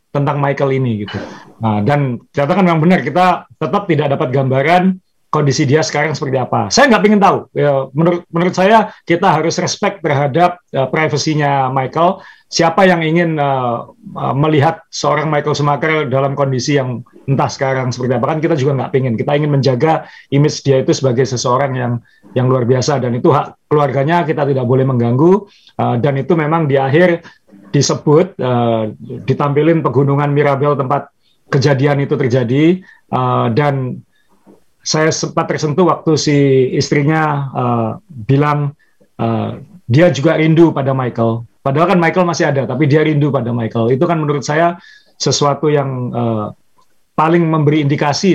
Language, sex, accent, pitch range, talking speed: Indonesian, male, native, 130-160 Hz, 155 wpm